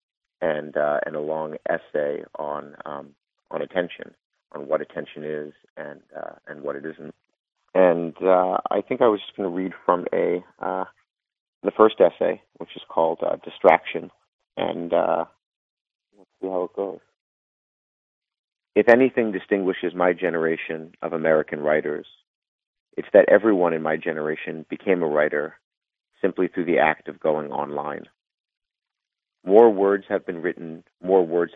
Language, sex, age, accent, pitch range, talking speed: English, male, 40-59, American, 80-90 Hz, 150 wpm